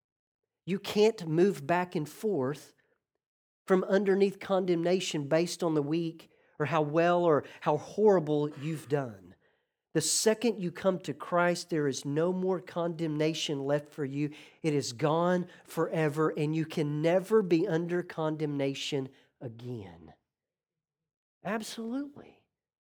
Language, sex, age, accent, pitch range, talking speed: English, male, 40-59, American, 155-200 Hz, 125 wpm